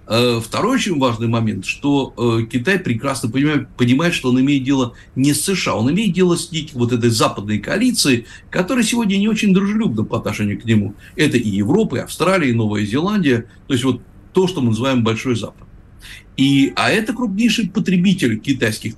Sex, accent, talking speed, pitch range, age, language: male, native, 175 wpm, 110-145 Hz, 60-79, Russian